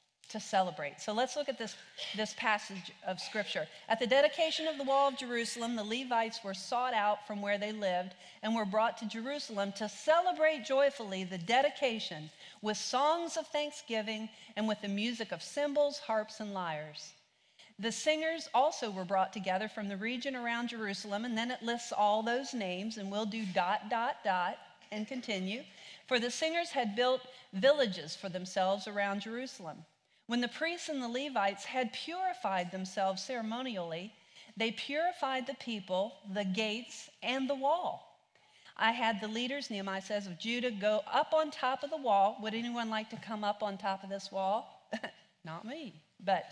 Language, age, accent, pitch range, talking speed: English, 40-59, American, 195-260 Hz, 175 wpm